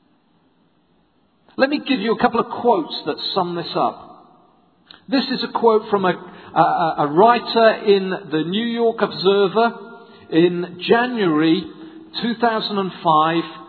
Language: English